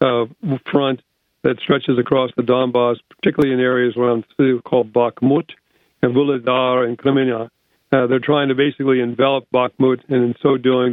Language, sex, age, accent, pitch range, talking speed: English, male, 50-69, American, 125-145 Hz, 165 wpm